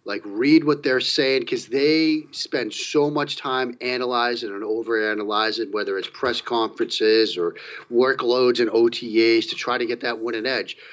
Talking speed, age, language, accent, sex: 160 wpm, 40-59, English, American, male